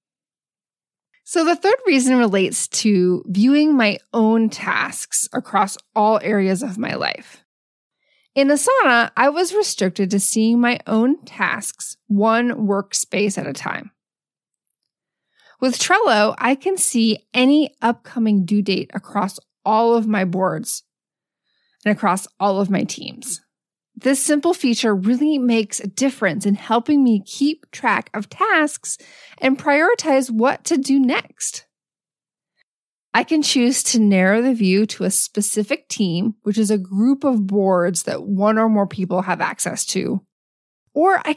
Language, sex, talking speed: English, female, 140 wpm